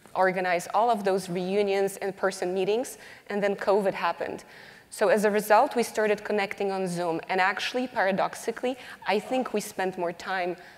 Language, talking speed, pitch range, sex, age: English, 165 wpm, 185-230 Hz, female, 20-39